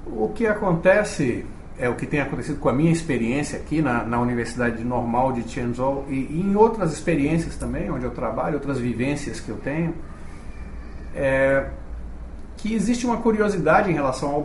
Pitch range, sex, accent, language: 120-180 Hz, male, Brazilian, Chinese